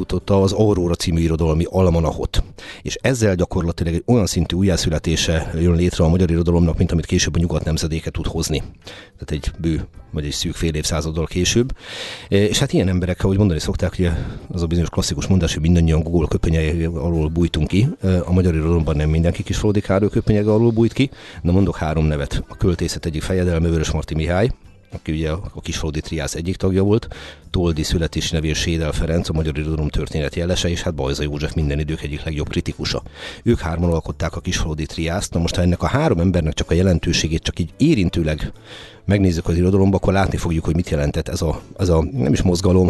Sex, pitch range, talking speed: male, 80-95 Hz, 185 wpm